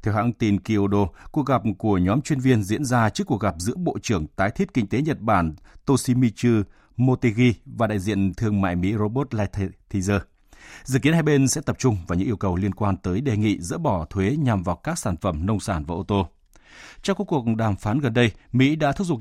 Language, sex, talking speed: Vietnamese, male, 230 wpm